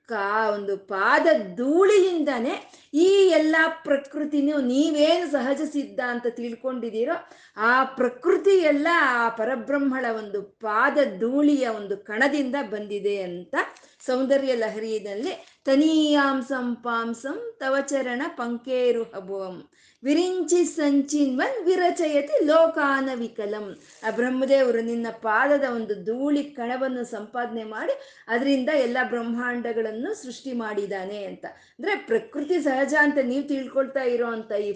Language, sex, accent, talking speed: Kannada, female, native, 100 wpm